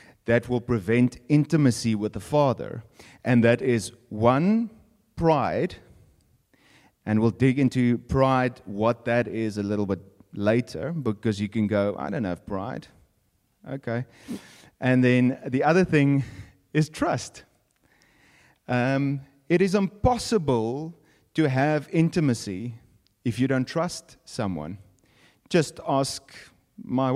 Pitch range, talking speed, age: 105-140 Hz, 120 wpm, 30-49